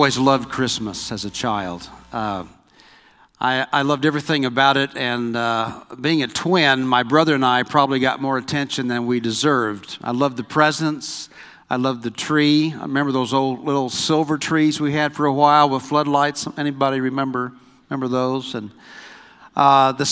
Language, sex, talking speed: English, male, 175 wpm